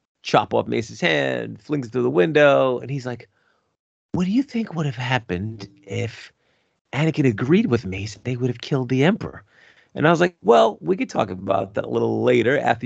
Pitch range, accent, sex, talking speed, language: 115-150 Hz, American, male, 200 wpm, English